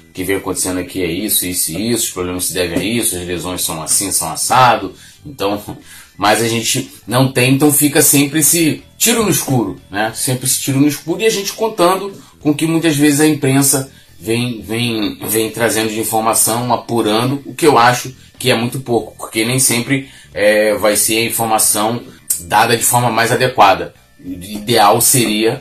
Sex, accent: male, Brazilian